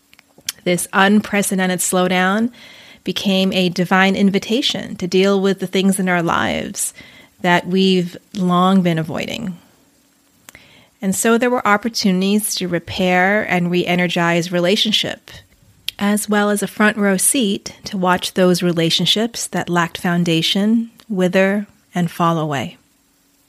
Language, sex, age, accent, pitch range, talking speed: English, female, 30-49, American, 175-205 Hz, 125 wpm